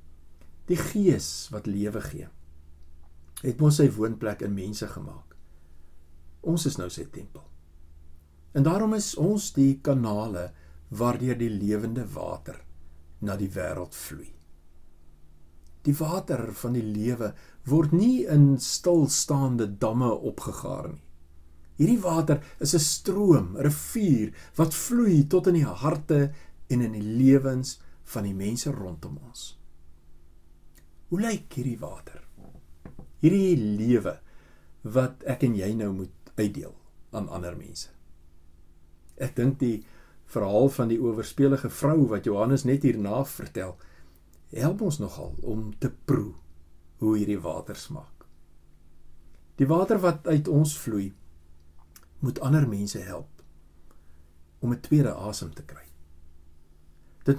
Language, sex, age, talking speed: English, male, 60-79, 125 wpm